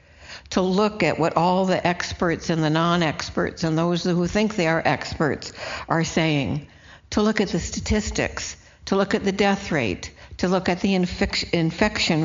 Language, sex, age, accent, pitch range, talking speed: English, female, 60-79, American, 140-175 Hz, 175 wpm